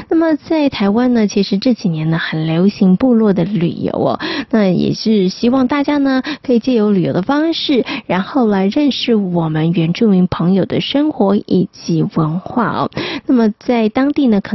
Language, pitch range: Chinese, 190-260 Hz